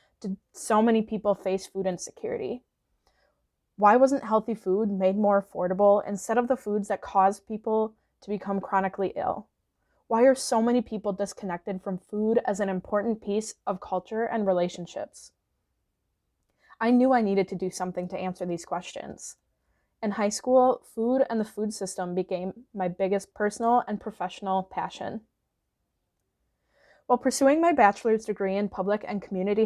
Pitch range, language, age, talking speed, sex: 185-220 Hz, English, 20-39, 155 wpm, female